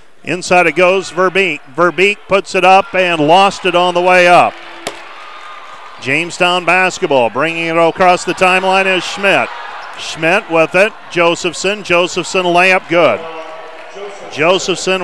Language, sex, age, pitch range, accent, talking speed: English, male, 50-69, 165-195 Hz, American, 130 wpm